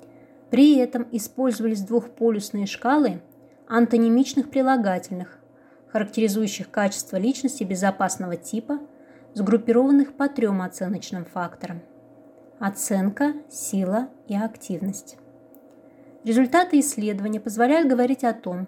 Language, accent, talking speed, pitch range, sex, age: Russian, native, 85 wpm, 200-280 Hz, female, 20-39